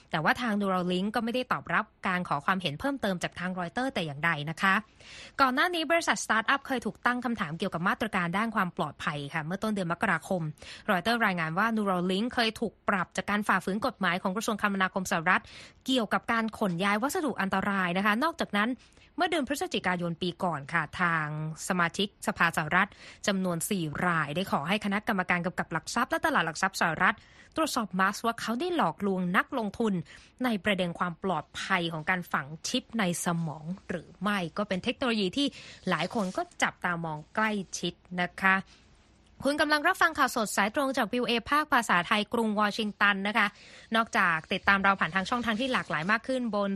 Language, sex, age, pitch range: Thai, female, 20-39, 180-230 Hz